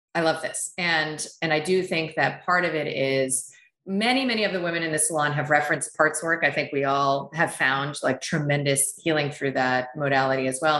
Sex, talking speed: female, 215 wpm